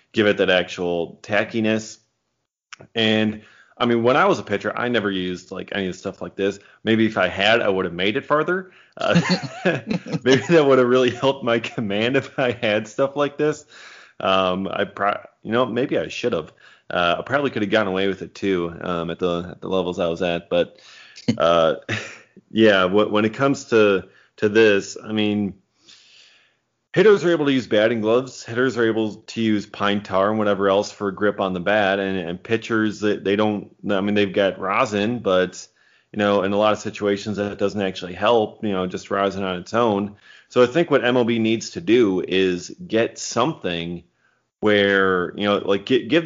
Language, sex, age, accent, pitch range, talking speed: English, male, 30-49, American, 95-115 Hz, 200 wpm